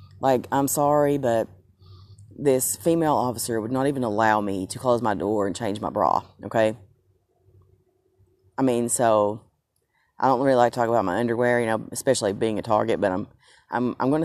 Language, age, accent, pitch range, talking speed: English, 30-49, American, 105-125 Hz, 185 wpm